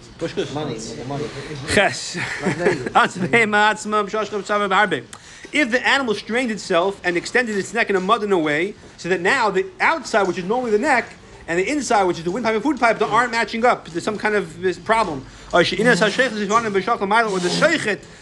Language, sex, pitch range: English, male, 180-235 Hz